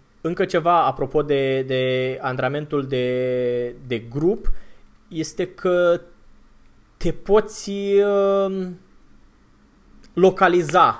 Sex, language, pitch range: male, Romanian, 140-185 Hz